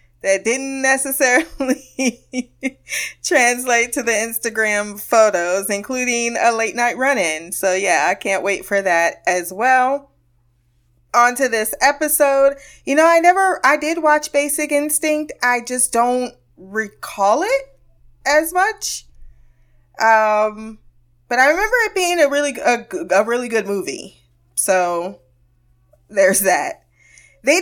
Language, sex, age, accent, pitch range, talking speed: English, female, 20-39, American, 185-275 Hz, 130 wpm